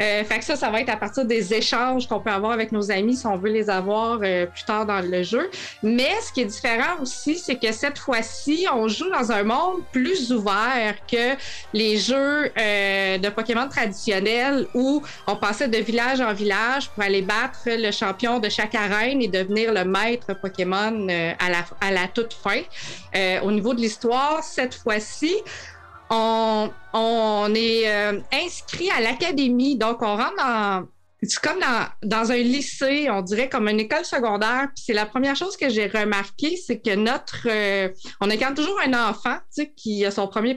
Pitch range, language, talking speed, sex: 210-265 Hz, French, 200 wpm, female